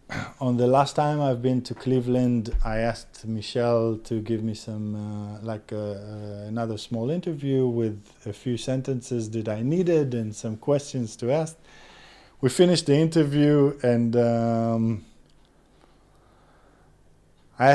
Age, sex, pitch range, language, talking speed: 20-39, male, 105-135 Hz, English, 135 wpm